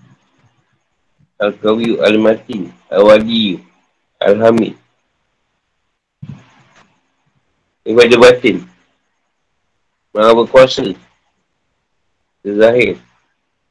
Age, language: 50-69, Malay